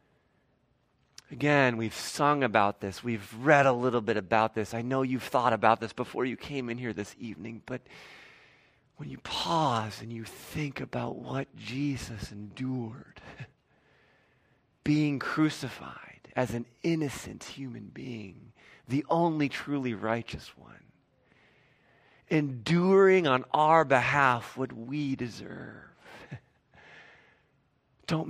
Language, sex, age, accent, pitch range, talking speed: English, male, 40-59, American, 120-150 Hz, 120 wpm